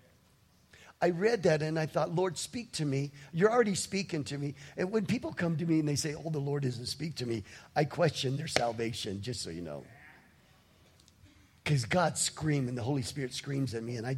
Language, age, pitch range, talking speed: English, 50-69, 120-160 Hz, 215 wpm